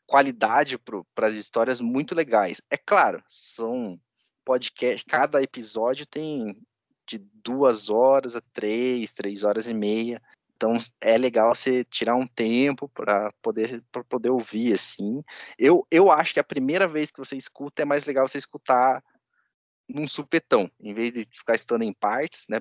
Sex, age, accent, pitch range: male, 20-39, Brazilian, 110-145 Hz